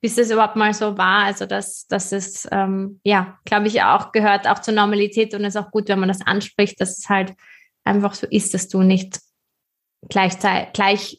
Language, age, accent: German, 20-39, German